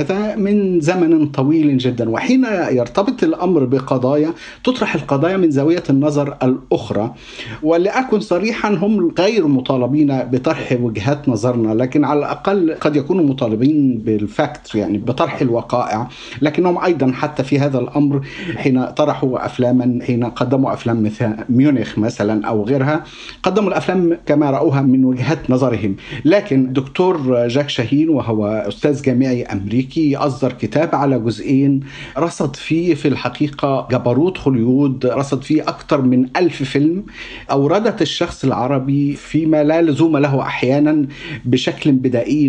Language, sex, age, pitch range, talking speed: Arabic, male, 50-69, 125-160 Hz, 130 wpm